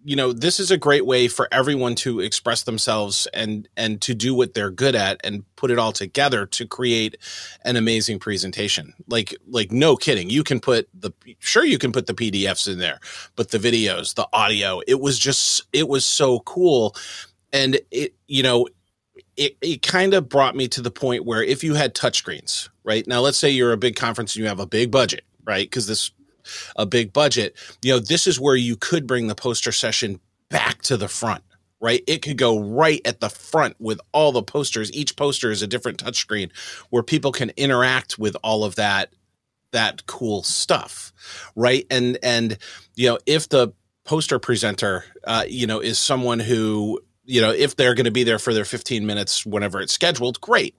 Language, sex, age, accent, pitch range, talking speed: English, male, 30-49, American, 110-135 Hz, 205 wpm